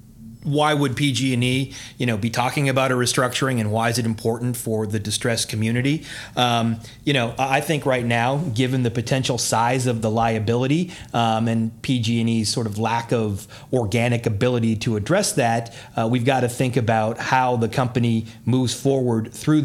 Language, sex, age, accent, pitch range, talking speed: English, male, 30-49, American, 110-130 Hz, 185 wpm